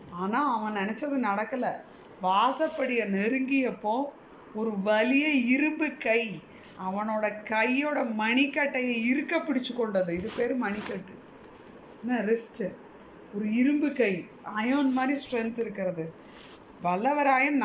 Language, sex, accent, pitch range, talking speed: Tamil, female, native, 215-285 Hz, 100 wpm